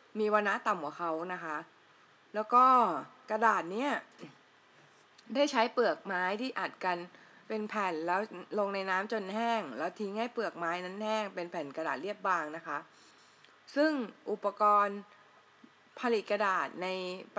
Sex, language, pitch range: female, Thai, 180-230 Hz